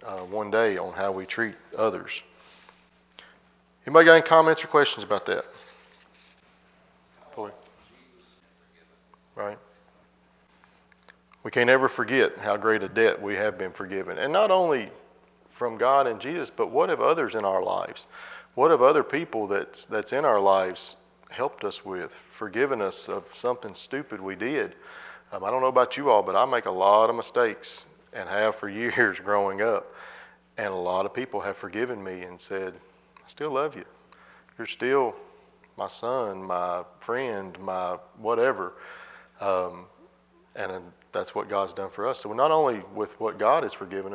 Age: 40-59